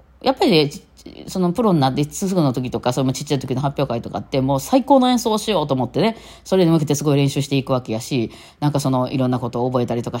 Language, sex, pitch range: Japanese, female, 130-200 Hz